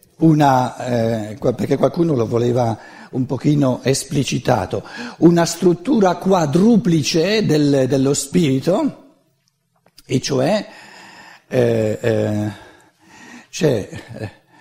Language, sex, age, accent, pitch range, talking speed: Italian, male, 60-79, native, 135-180 Hz, 85 wpm